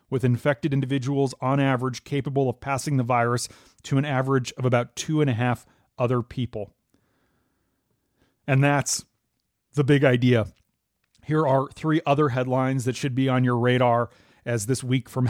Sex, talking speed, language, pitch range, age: male, 160 wpm, English, 125-145 Hz, 30-49